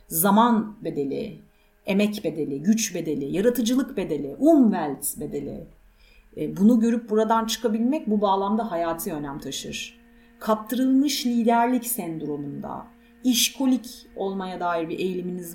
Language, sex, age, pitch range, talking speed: Turkish, female, 40-59, 160-230 Hz, 105 wpm